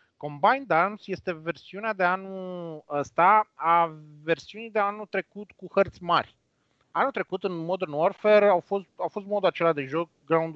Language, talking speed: Romanian, 165 wpm